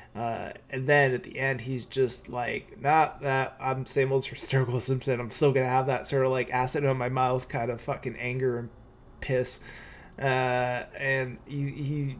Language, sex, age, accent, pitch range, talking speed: English, male, 20-39, American, 120-135 Hz, 185 wpm